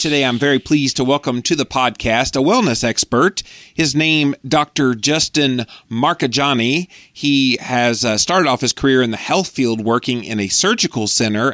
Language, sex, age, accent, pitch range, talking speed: English, male, 30-49, American, 115-140 Hz, 165 wpm